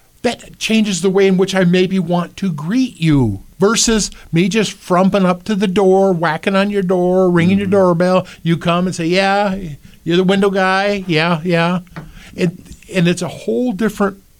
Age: 50-69